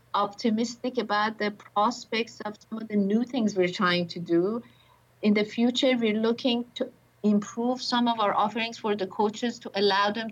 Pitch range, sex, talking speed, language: 200-235 Hz, female, 180 wpm, English